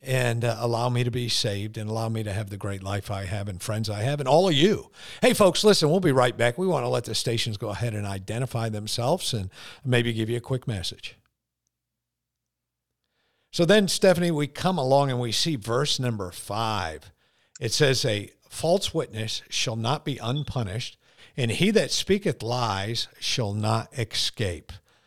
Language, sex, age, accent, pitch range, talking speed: English, male, 50-69, American, 110-135 Hz, 190 wpm